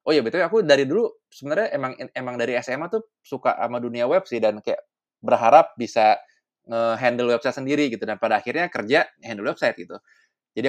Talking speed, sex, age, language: 190 wpm, male, 20-39, Indonesian